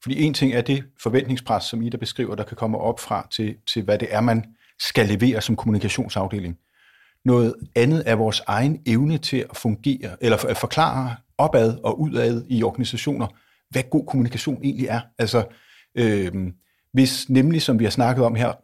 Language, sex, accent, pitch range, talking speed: Danish, male, native, 110-135 Hz, 185 wpm